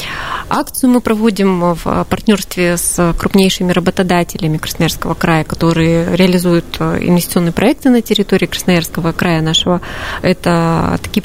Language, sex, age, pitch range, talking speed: Russian, female, 20-39, 175-195 Hz, 110 wpm